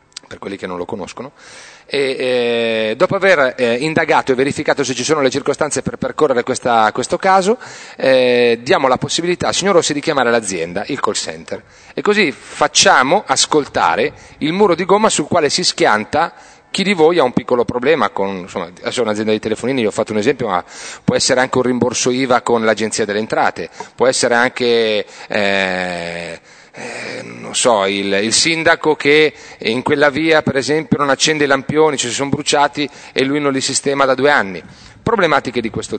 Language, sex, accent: Italian, male, native